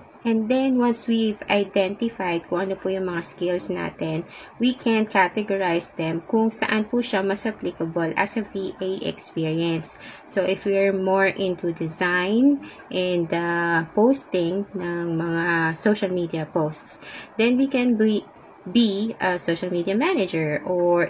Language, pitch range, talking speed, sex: English, 175-210 Hz, 140 wpm, female